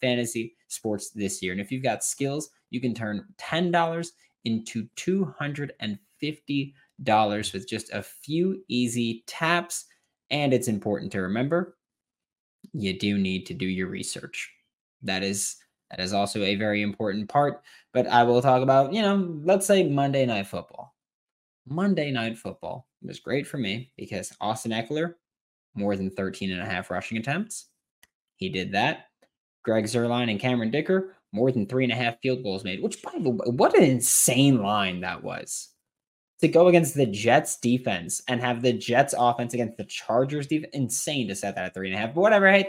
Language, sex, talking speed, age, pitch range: English, male, 175 wpm, 20-39, 105-150 Hz